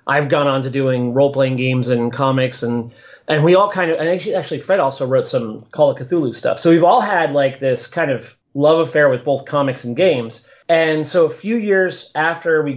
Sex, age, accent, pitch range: male, 30-49, American, 130-165 Hz